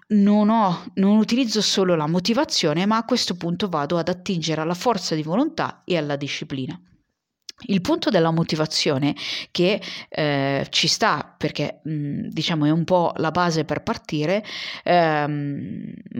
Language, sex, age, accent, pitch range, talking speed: Italian, female, 30-49, native, 155-200 Hz, 140 wpm